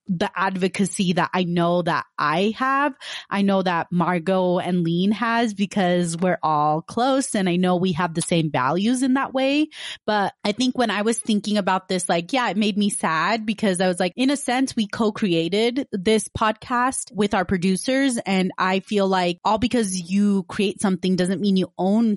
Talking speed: 195 wpm